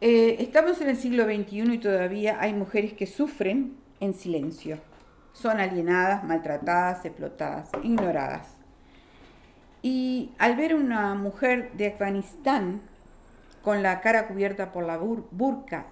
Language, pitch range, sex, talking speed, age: Spanish, 190-255 Hz, female, 130 wpm, 50-69